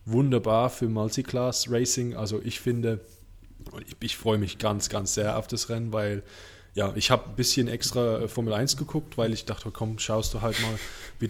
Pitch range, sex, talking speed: 105-130 Hz, male, 190 wpm